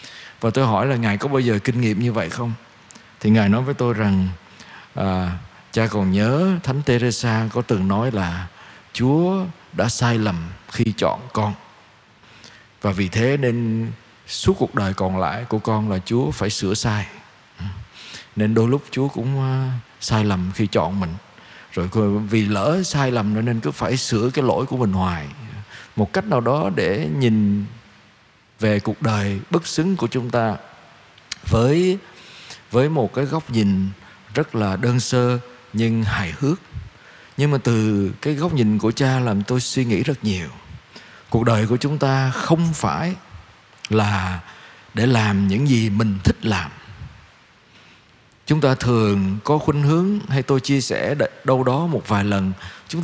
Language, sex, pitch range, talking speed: Vietnamese, male, 105-130 Hz, 165 wpm